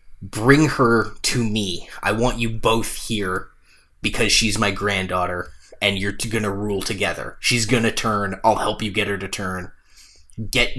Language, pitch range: English, 100-120 Hz